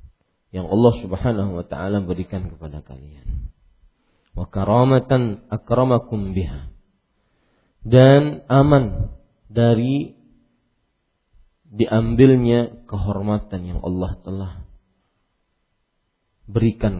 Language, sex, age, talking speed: Indonesian, male, 40-59, 70 wpm